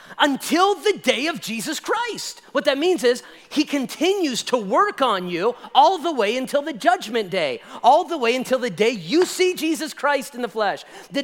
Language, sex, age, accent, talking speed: English, male, 40-59, American, 200 wpm